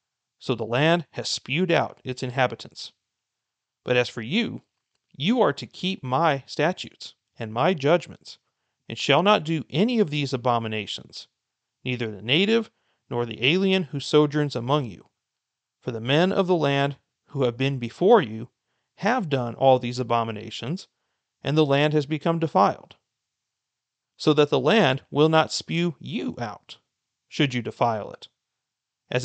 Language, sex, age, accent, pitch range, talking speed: English, male, 40-59, American, 120-155 Hz, 155 wpm